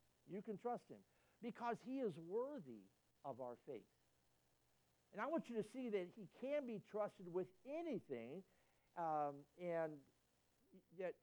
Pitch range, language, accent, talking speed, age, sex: 140-210 Hz, English, American, 145 wpm, 60-79, male